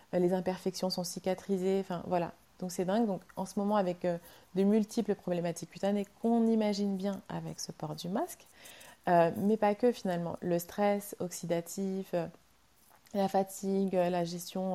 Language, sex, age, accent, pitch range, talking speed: English, female, 30-49, French, 175-205 Hz, 165 wpm